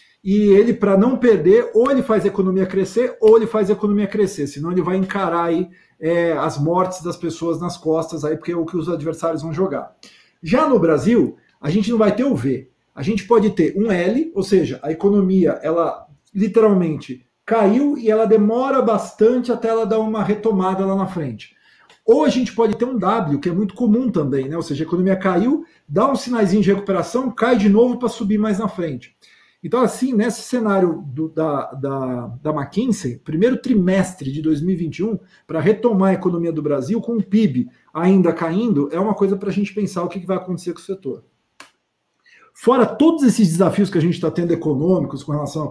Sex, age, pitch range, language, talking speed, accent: male, 50-69, 170-225 Hz, Portuguese, 200 wpm, Brazilian